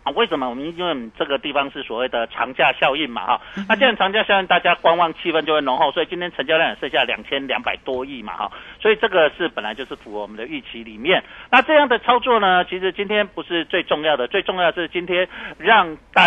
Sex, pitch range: male, 135-210 Hz